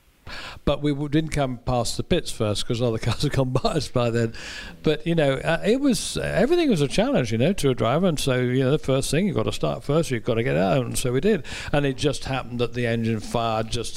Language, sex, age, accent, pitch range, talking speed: English, male, 60-79, British, 105-135 Hz, 270 wpm